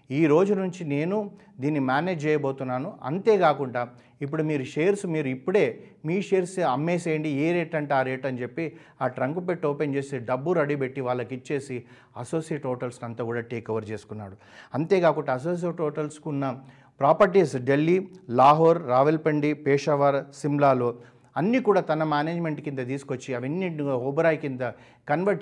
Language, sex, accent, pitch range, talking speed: Telugu, male, native, 125-165 Hz, 135 wpm